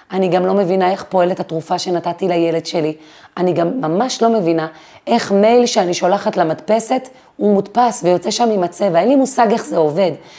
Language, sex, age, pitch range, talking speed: Hebrew, female, 30-49, 170-225 Hz, 185 wpm